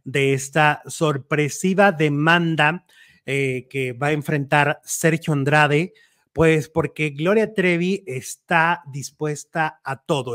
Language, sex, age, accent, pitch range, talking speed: Italian, male, 30-49, Mexican, 140-165 Hz, 110 wpm